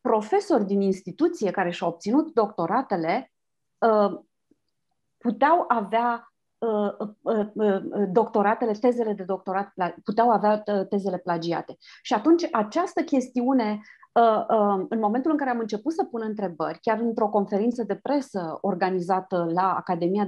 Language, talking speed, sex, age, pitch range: Romanian, 110 wpm, female, 30-49, 195-250 Hz